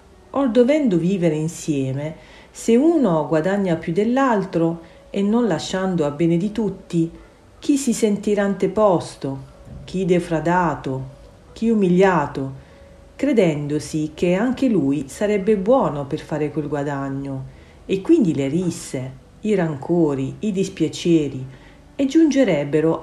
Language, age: Italian, 40-59